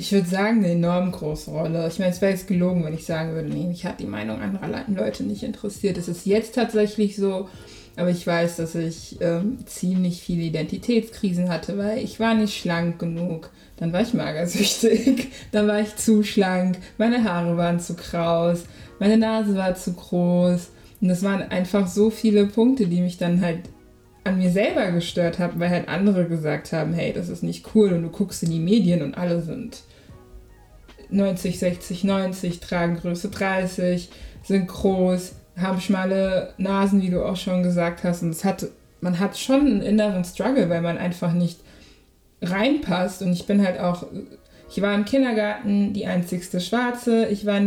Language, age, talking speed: German, 20-39, 185 wpm